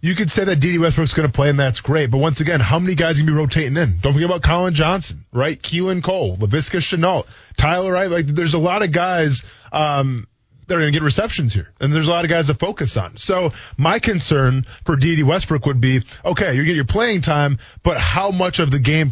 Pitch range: 135-180 Hz